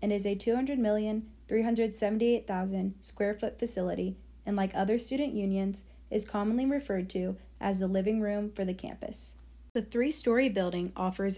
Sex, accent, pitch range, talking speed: female, American, 185-220 Hz, 140 wpm